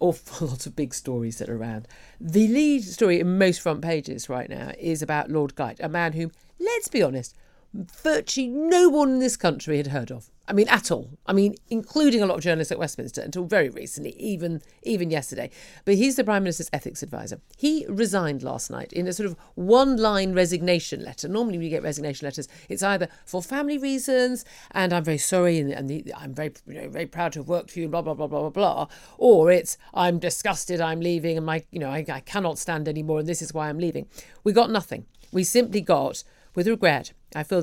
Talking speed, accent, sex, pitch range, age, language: 220 wpm, British, female, 150-190 Hz, 50-69, English